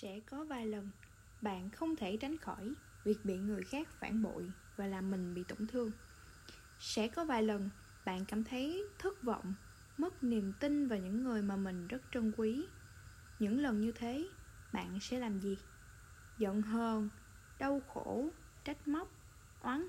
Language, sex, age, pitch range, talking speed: Vietnamese, female, 10-29, 200-270 Hz, 170 wpm